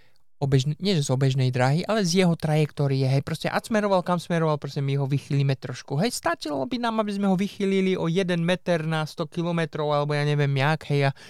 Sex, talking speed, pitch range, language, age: male, 220 wpm, 135-165 Hz, Slovak, 20-39